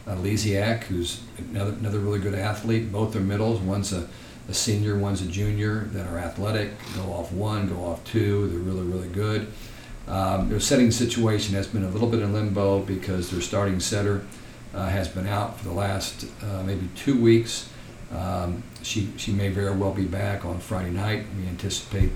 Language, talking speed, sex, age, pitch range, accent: English, 185 wpm, male, 50-69, 95-110 Hz, American